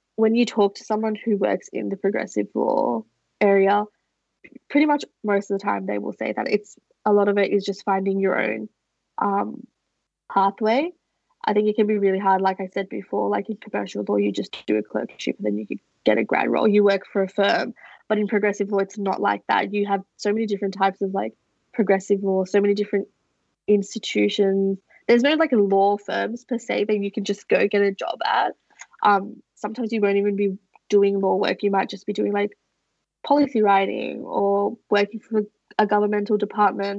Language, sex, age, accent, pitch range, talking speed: English, female, 20-39, Australian, 195-220 Hz, 210 wpm